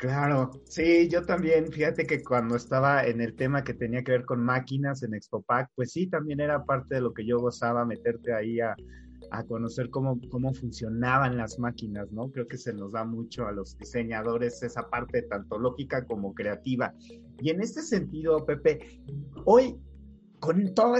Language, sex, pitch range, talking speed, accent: Spanish, male, 120-160 Hz, 180 wpm, Mexican